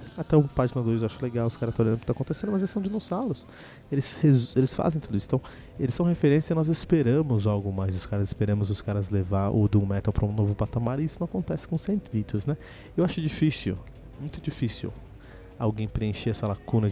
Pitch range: 110-150 Hz